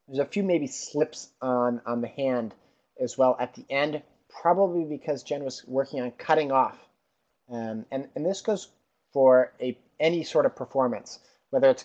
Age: 30-49